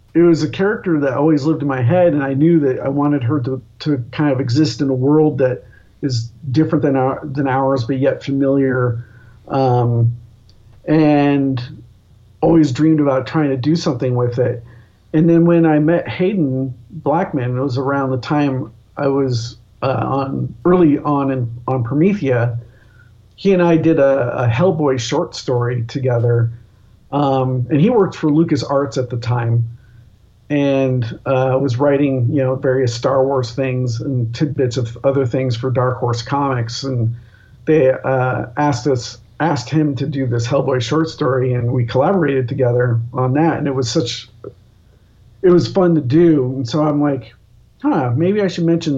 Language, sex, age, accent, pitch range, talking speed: English, male, 50-69, American, 120-145 Hz, 175 wpm